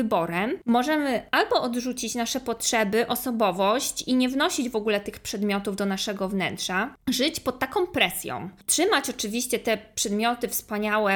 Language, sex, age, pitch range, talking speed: Polish, female, 20-39, 210-255 Hz, 140 wpm